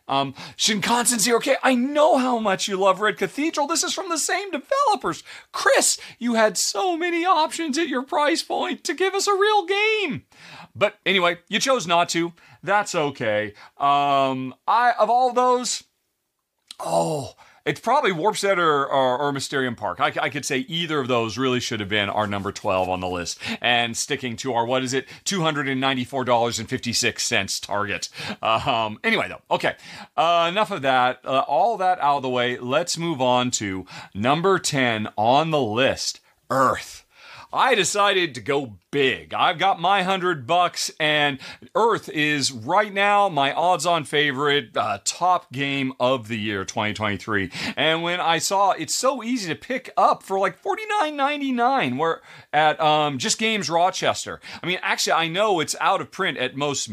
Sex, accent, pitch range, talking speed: male, American, 130-215 Hz, 175 wpm